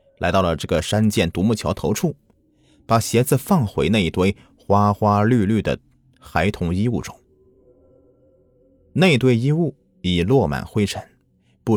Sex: male